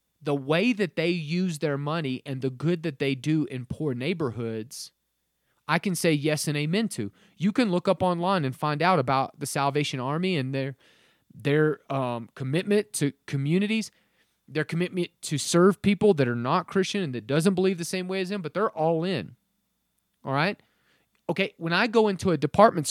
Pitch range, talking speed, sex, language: 145-190 Hz, 190 wpm, male, English